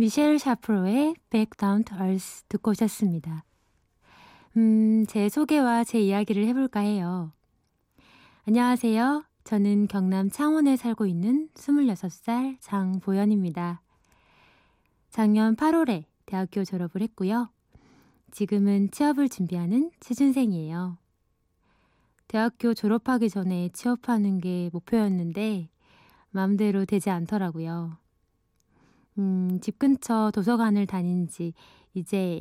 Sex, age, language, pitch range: female, 20-39, Korean, 185-235 Hz